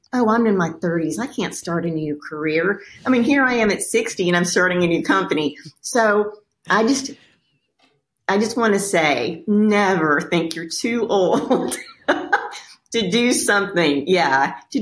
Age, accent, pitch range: 40-59, American, 170-220 Hz